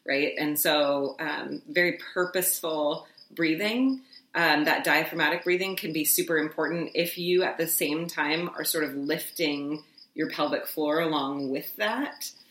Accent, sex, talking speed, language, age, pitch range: American, female, 150 wpm, English, 30-49, 150-185 Hz